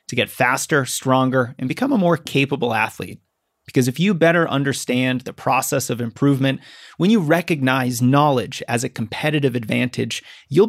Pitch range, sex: 125-150 Hz, male